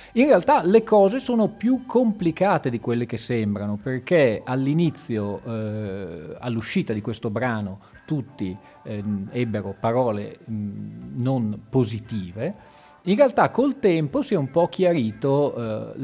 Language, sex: Italian, male